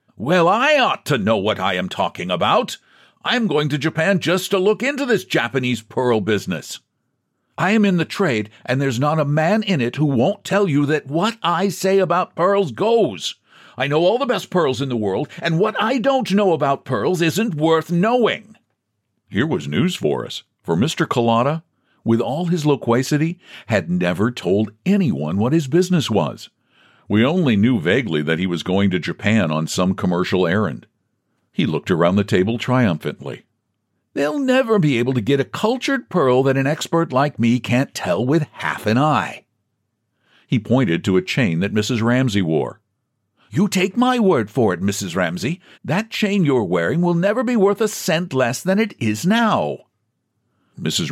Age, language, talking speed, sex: 60-79, English, 185 wpm, male